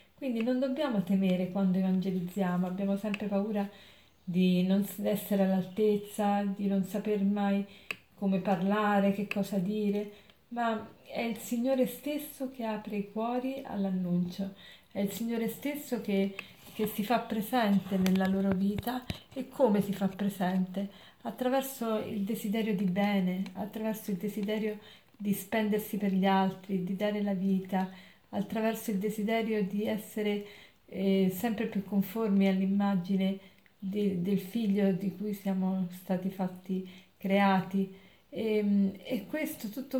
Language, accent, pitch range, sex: Italian, native, 195-220 Hz, female